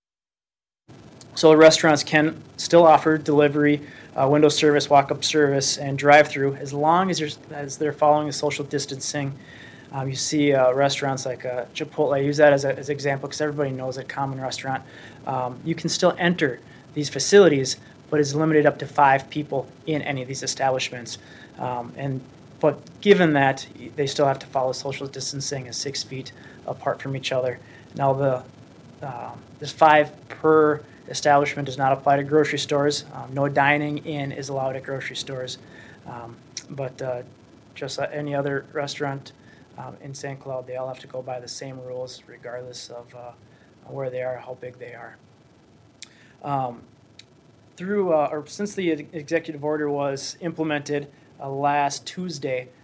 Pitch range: 130-150 Hz